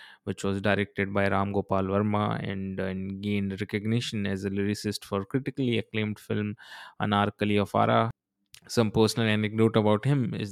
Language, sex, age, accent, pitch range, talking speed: Hindi, male, 20-39, native, 95-105 Hz, 155 wpm